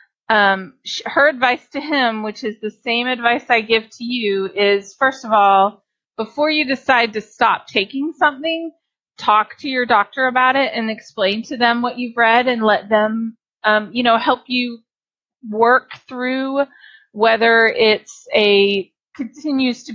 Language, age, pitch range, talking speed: English, 30-49, 210-265 Hz, 160 wpm